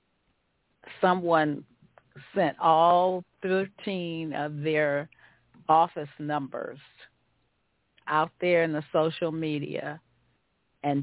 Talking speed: 80 wpm